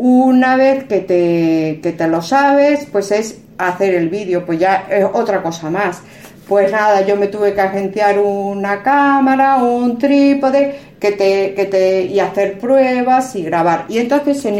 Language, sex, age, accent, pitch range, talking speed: Spanish, female, 50-69, Spanish, 180-255 Hz, 175 wpm